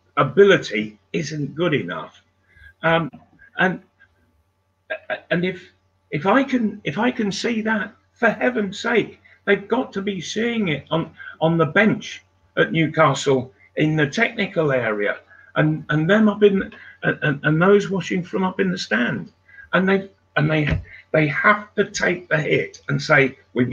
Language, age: English, 50-69